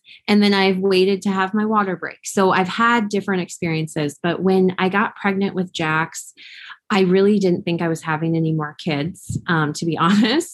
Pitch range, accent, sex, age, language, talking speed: 160-195 Hz, American, female, 20-39, English, 200 wpm